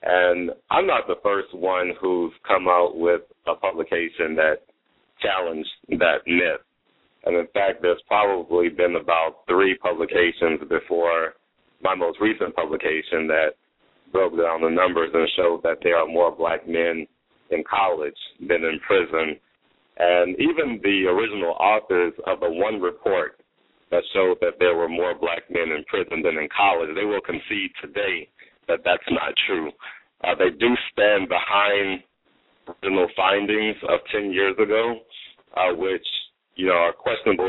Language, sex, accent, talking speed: English, male, American, 150 wpm